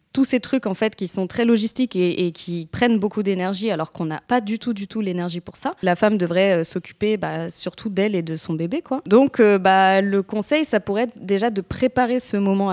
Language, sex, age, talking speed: French, female, 20-39, 240 wpm